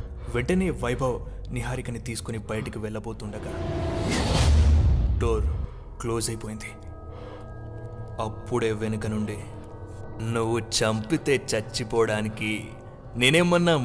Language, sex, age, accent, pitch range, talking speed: Telugu, male, 20-39, native, 105-120 Hz, 70 wpm